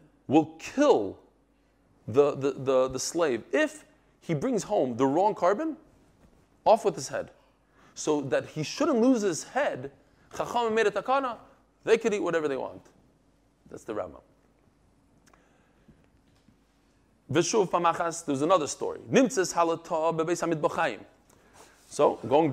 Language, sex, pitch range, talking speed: English, male, 155-225 Hz, 110 wpm